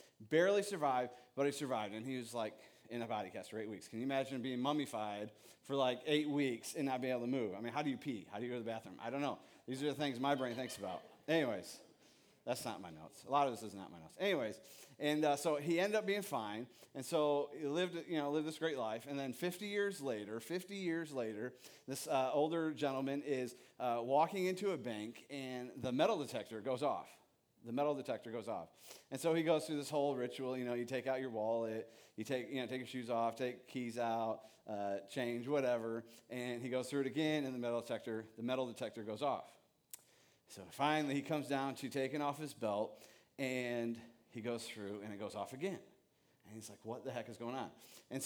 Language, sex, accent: English, male, American